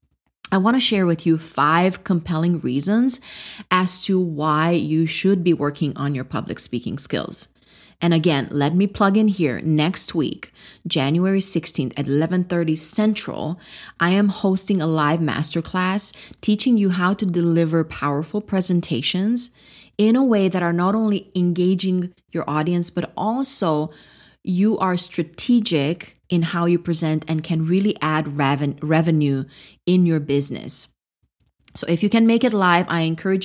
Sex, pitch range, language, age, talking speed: female, 155-190 Hz, English, 30-49, 150 wpm